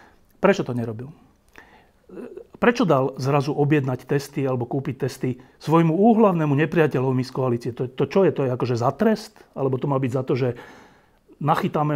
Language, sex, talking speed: Slovak, male, 165 wpm